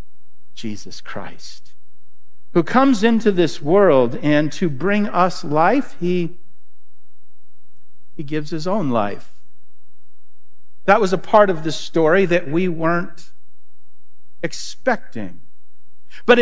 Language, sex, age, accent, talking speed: English, male, 50-69, American, 110 wpm